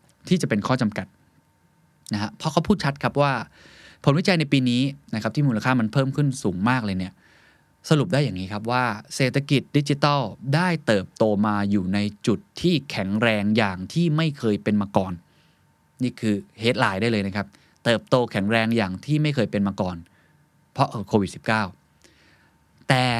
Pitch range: 100-135 Hz